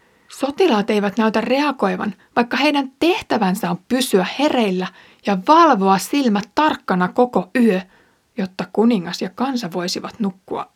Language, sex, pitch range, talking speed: Finnish, female, 195-250 Hz, 125 wpm